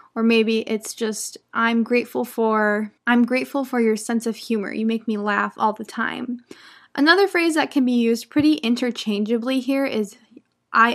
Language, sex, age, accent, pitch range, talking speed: English, female, 10-29, American, 220-260 Hz, 175 wpm